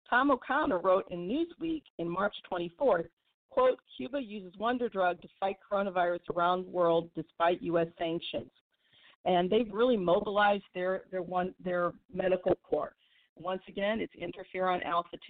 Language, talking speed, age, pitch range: English, 145 wpm, 50-69, 170-205 Hz